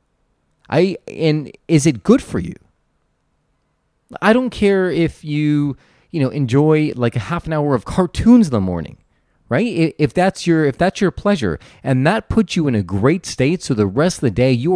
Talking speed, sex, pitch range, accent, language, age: 195 wpm, male, 115-170 Hz, American, English, 30-49